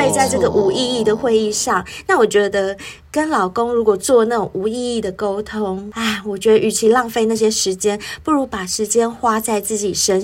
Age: 20-39